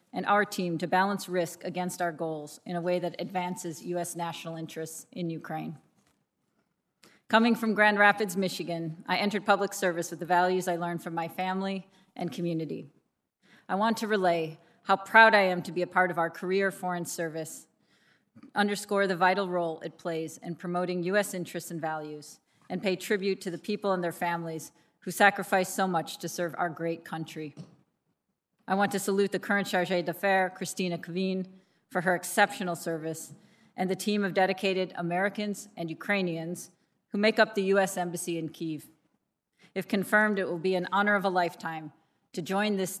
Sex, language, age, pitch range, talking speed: female, English, 30-49, 170-195 Hz, 180 wpm